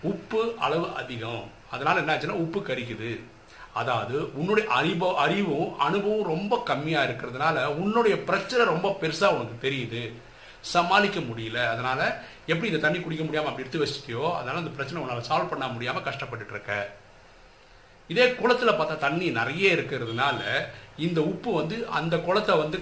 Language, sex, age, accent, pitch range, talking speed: Tamil, male, 50-69, native, 125-195 Hz, 95 wpm